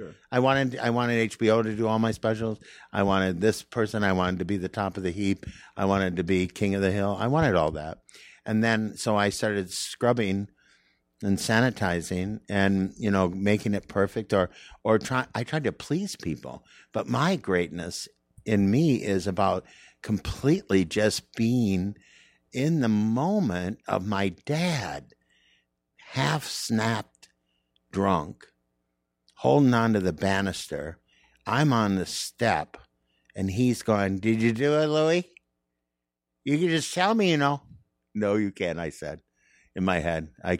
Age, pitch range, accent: 50-69, 80-115 Hz, American